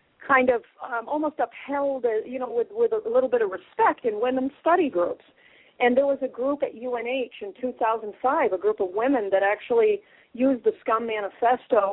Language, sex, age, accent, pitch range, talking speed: English, female, 40-59, American, 200-265 Hz, 190 wpm